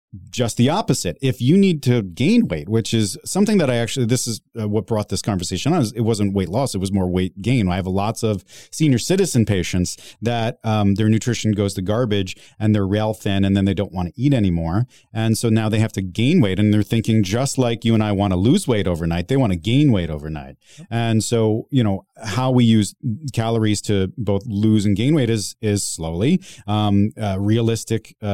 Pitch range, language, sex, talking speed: 100-120 Hz, English, male, 220 wpm